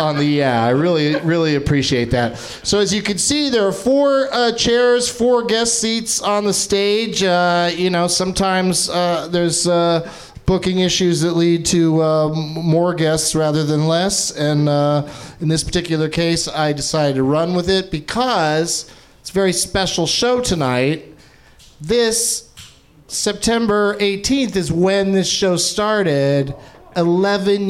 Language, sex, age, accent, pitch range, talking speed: English, male, 40-59, American, 150-195 Hz, 145 wpm